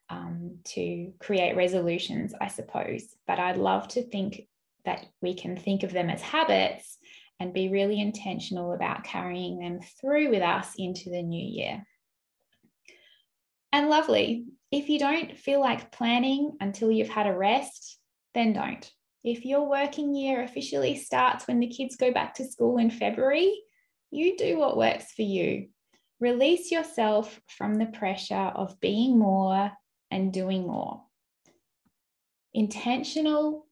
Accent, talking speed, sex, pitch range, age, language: Australian, 140 wpm, female, 195-270 Hz, 10-29, English